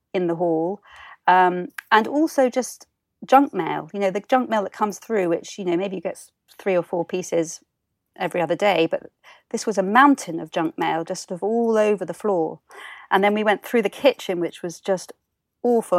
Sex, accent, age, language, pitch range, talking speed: female, British, 40-59, English, 175-220 Hz, 210 wpm